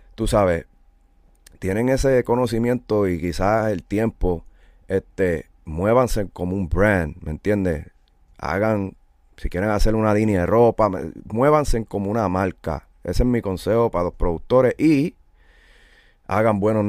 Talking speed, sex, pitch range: 135 wpm, male, 85-110 Hz